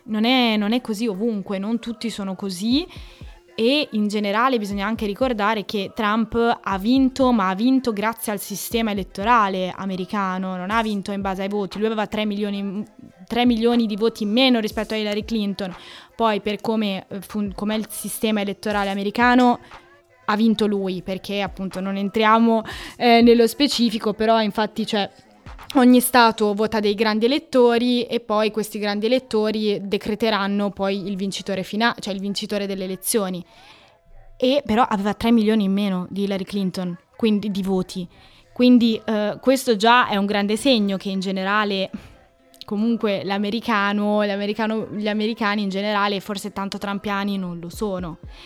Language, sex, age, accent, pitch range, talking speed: Italian, female, 20-39, native, 200-230 Hz, 155 wpm